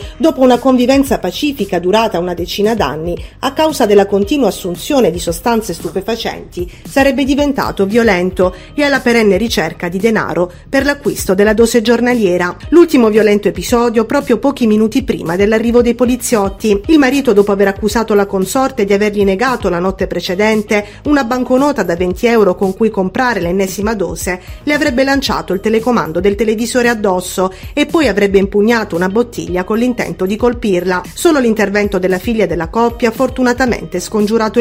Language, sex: Italian, female